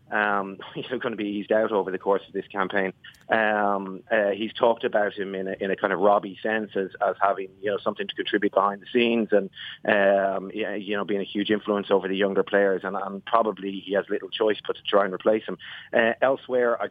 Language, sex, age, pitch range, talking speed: English, male, 30-49, 100-125 Hz, 250 wpm